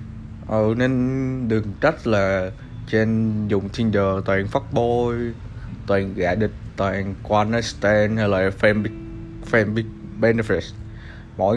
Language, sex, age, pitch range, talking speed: Vietnamese, male, 20-39, 105-125 Hz, 110 wpm